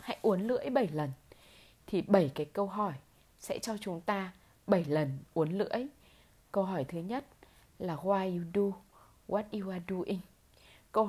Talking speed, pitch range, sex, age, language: 170 wpm, 165-220 Hz, female, 20-39, Vietnamese